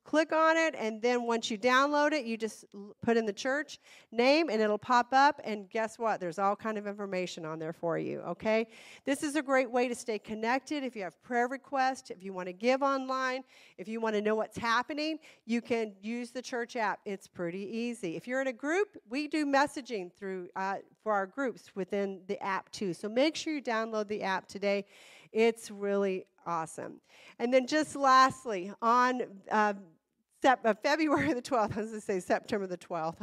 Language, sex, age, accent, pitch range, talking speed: English, female, 40-59, American, 200-260 Hz, 205 wpm